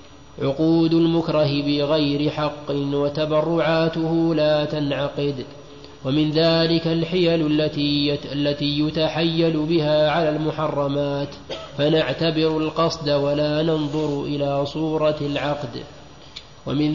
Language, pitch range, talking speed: Arabic, 145-160 Hz, 80 wpm